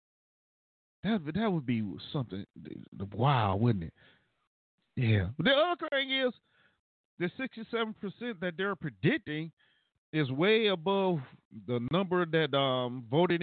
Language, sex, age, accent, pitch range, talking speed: English, male, 40-59, American, 115-150 Hz, 125 wpm